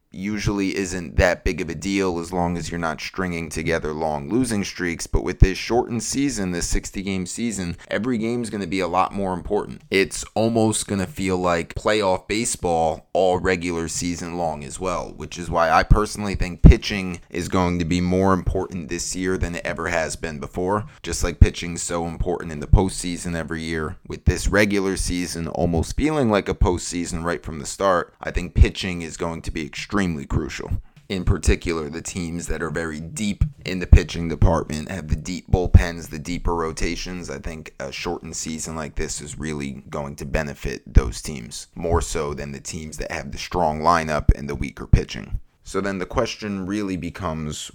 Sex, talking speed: male, 195 wpm